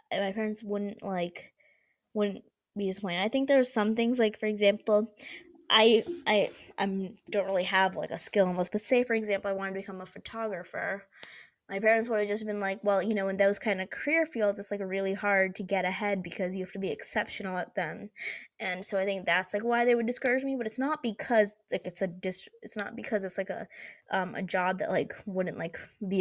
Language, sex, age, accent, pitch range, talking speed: English, female, 20-39, American, 190-220 Hz, 235 wpm